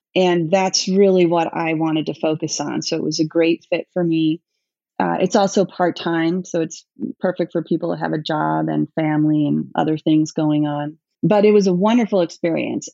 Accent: American